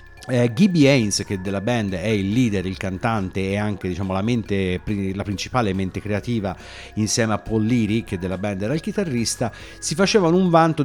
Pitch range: 100-135 Hz